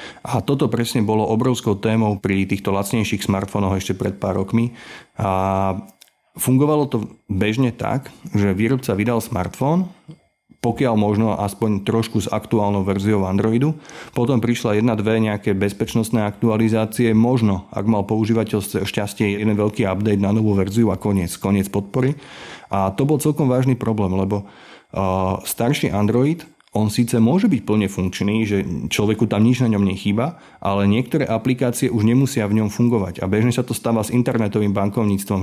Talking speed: 155 wpm